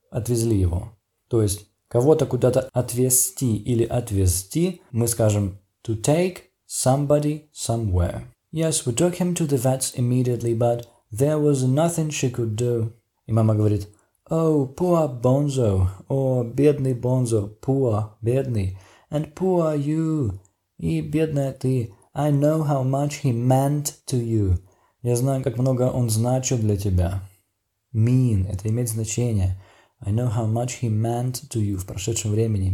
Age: 20-39